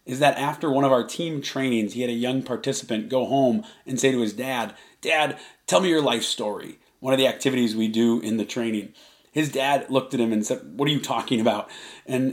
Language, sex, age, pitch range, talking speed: English, male, 30-49, 125-145 Hz, 235 wpm